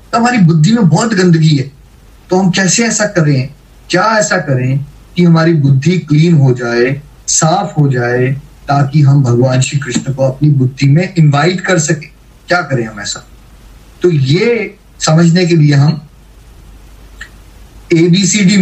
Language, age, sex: Hindi, 20-39, male